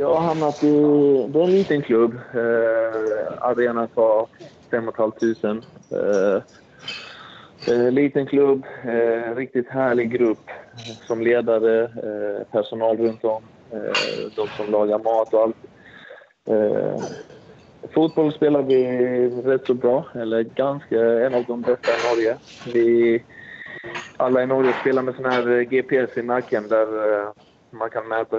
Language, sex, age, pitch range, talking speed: Swedish, male, 20-39, 110-130 Hz, 135 wpm